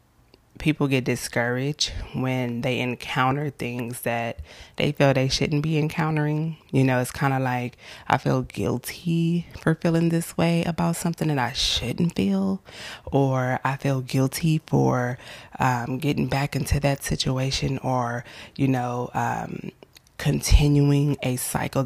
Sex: female